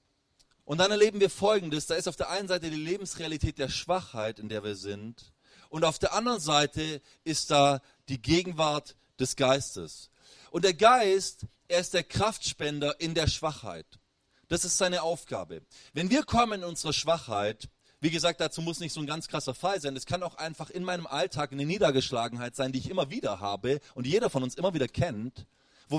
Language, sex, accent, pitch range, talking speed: German, male, German, 135-175 Hz, 195 wpm